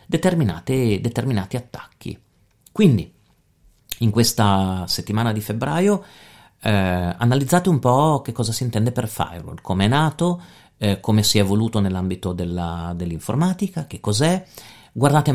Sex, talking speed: male, 125 wpm